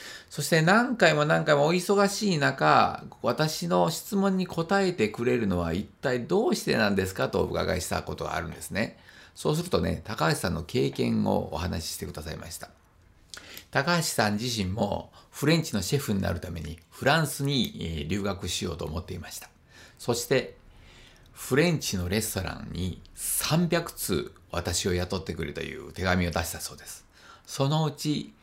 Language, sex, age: Japanese, male, 50-69